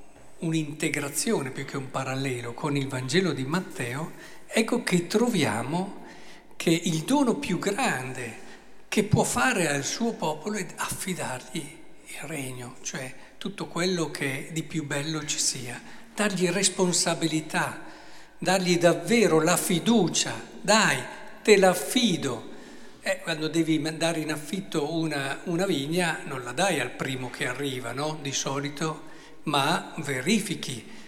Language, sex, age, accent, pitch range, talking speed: Italian, male, 60-79, native, 140-185 Hz, 130 wpm